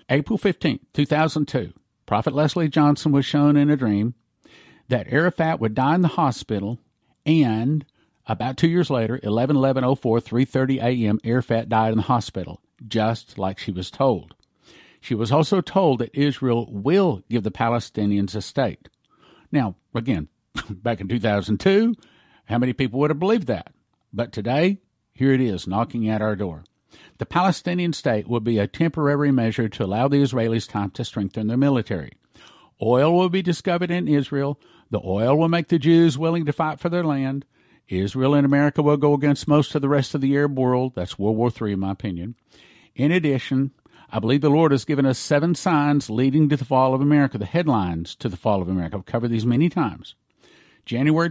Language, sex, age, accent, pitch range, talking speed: English, male, 50-69, American, 110-150 Hz, 190 wpm